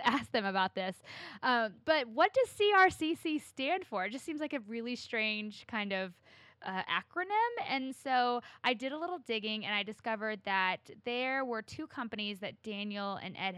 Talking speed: 180 wpm